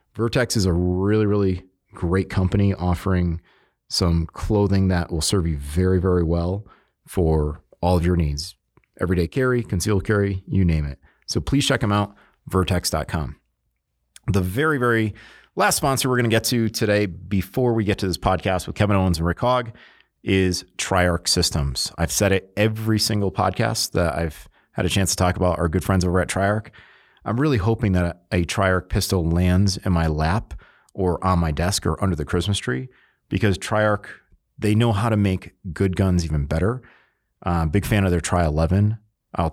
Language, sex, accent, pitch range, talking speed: English, male, American, 90-105 Hz, 185 wpm